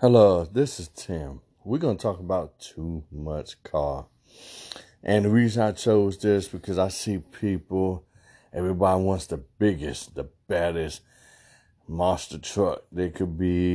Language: English